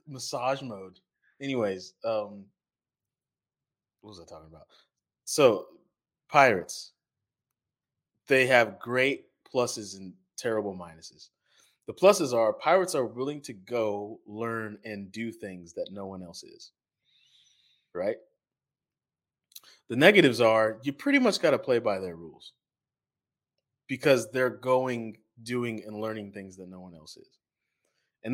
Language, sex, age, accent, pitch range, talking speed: English, male, 20-39, American, 100-130 Hz, 130 wpm